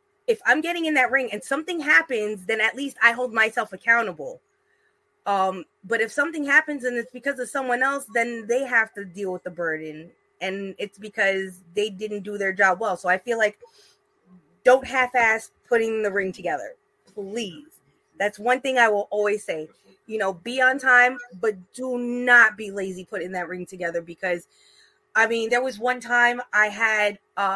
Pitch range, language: 190-255 Hz, English